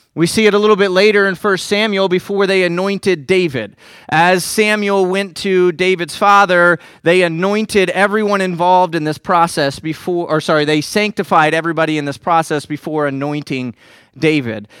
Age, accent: 30-49, American